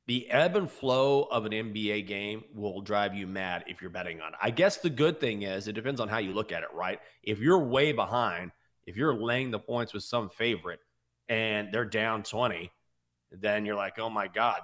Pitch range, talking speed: 105-130 Hz, 220 wpm